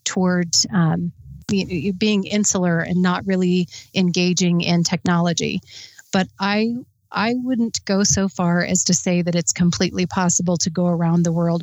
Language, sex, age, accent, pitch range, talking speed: English, female, 30-49, American, 175-195 Hz, 150 wpm